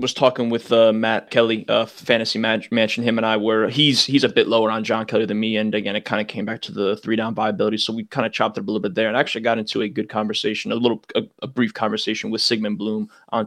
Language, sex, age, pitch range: English, male, 20-39, 105-115 Hz